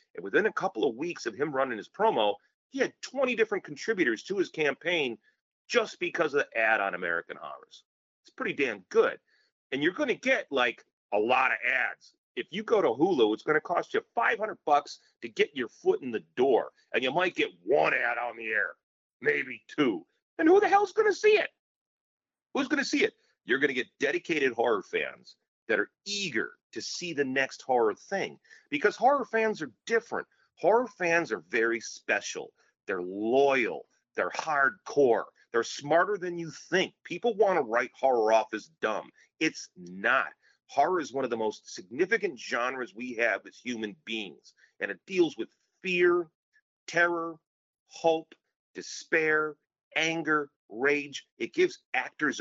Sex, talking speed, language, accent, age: male, 175 wpm, English, American, 40-59